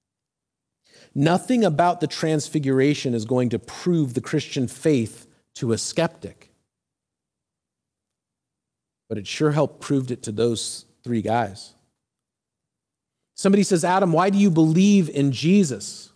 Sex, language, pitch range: male, English, 120-165 Hz